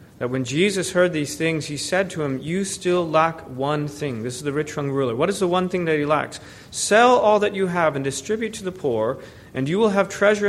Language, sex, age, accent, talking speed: English, male, 40-59, American, 250 wpm